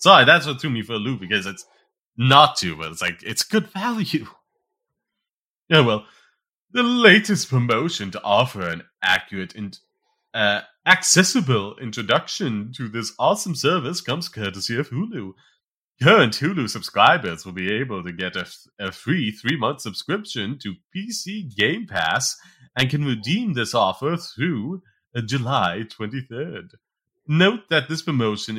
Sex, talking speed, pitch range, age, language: male, 145 wpm, 110-180 Hz, 30-49, English